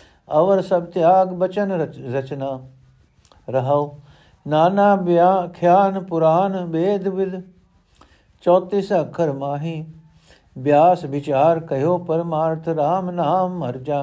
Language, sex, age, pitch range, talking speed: Punjabi, male, 60-79, 140-185 Hz, 95 wpm